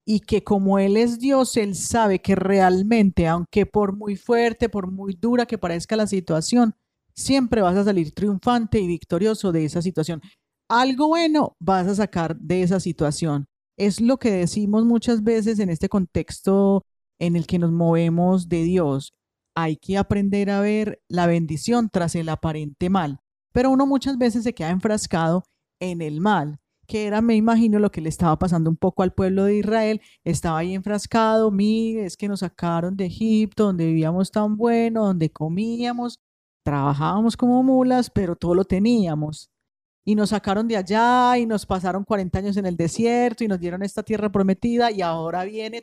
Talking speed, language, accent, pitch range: 180 wpm, Spanish, Colombian, 175-220 Hz